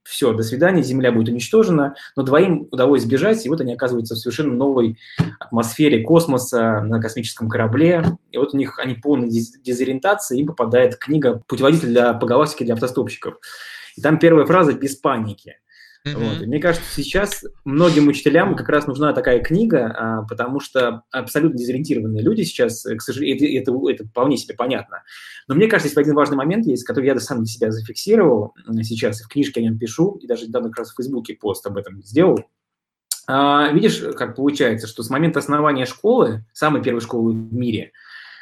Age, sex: 20-39, male